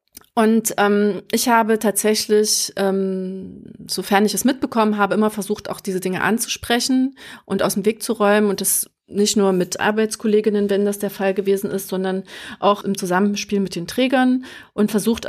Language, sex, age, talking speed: German, female, 30-49, 175 wpm